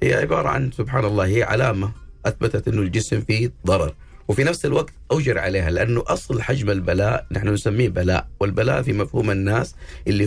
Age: 50-69